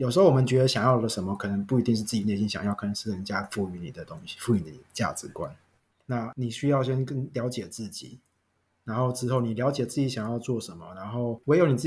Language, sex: Chinese, male